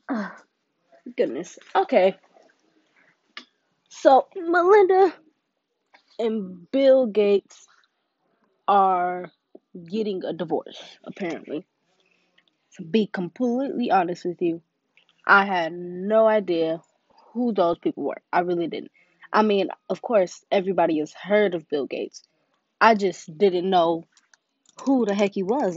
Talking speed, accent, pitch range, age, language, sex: 115 wpm, American, 175-230 Hz, 20-39, English, female